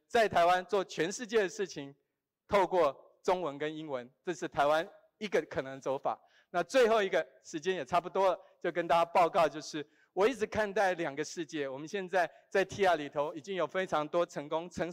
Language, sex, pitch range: Chinese, male, 155-200 Hz